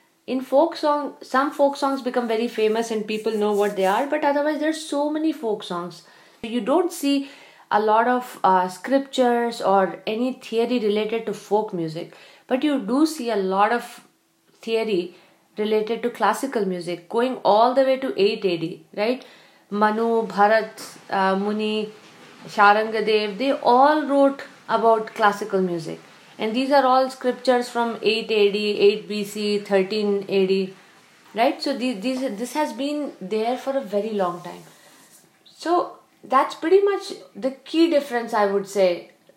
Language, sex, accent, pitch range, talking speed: English, female, Indian, 205-270 Hz, 155 wpm